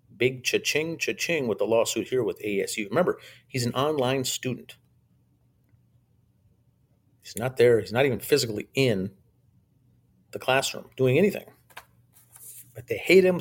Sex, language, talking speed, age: male, English, 135 wpm, 50-69